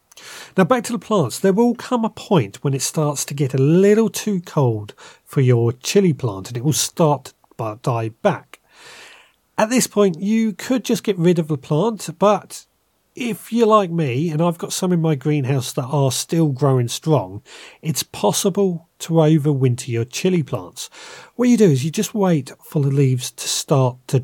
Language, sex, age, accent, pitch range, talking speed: English, male, 40-59, British, 130-180 Hz, 195 wpm